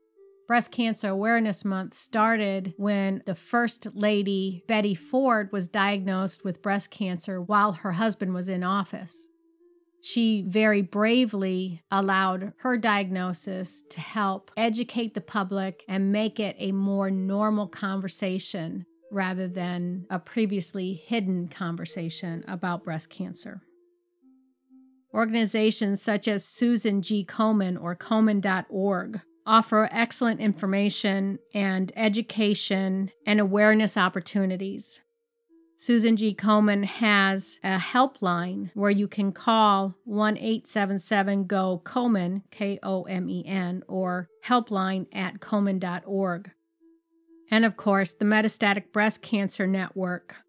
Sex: female